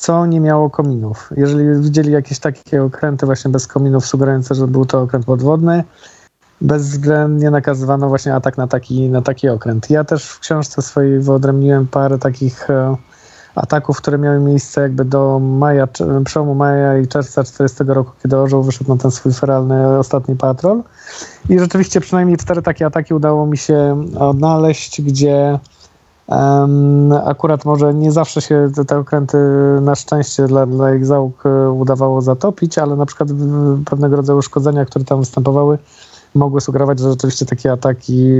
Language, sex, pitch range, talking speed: Polish, male, 135-150 Hz, 155 wpm